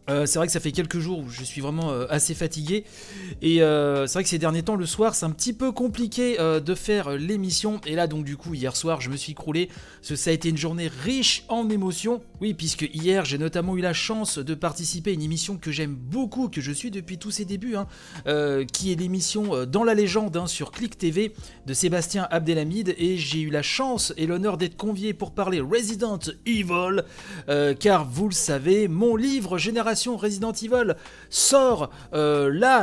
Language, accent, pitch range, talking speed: French, French, 155-215 Hz, 220 wpm